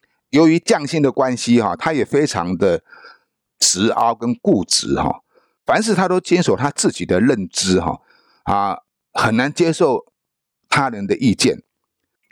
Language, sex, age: Chinese, male, 50-69